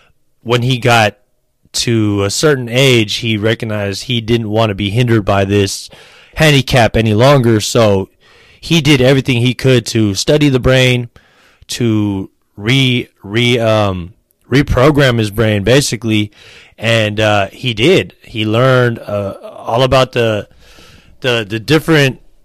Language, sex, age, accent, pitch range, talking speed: English, male, 20-39, American, 105-125 Hz, 135 wpm